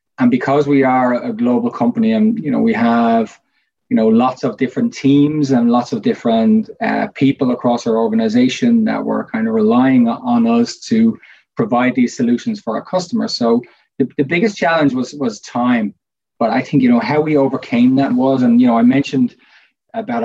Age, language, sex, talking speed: 20-39, English, male, 195 wpm